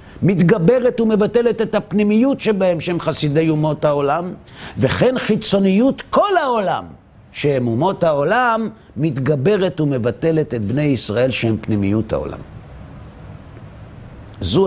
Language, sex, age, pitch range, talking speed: Hebrew, male, 50-69, 125-160 Hz, 100 wpm